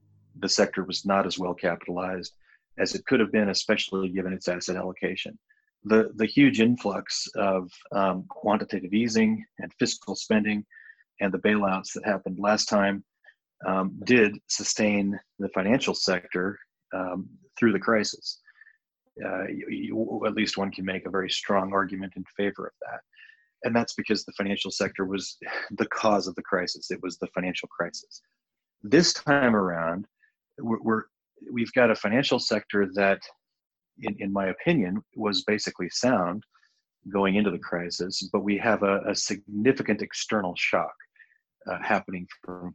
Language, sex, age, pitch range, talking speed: English, male, 30-49, 95-110 Hz, 155 wpm